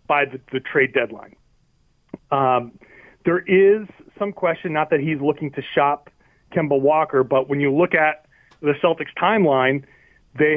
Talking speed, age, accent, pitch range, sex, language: 155 wpm, 30-49, American, 135-170 Hz, male, English